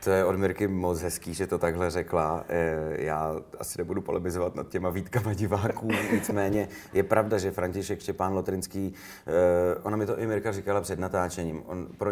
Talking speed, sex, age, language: 175 wpm, male, 30-49, Czech